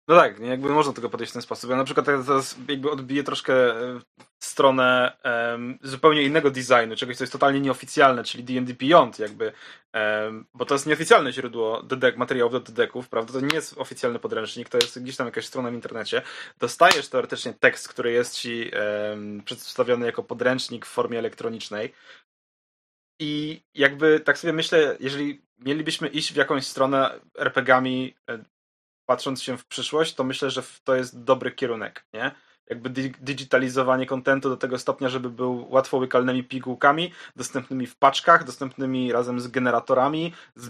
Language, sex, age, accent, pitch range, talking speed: Polish, male, 20-39, native, 125-140 Hz, 160 wpm